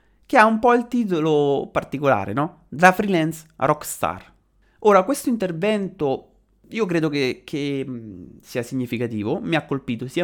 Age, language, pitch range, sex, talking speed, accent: 30-49, Italian, 125-180 Hz, male, 140 wpm, native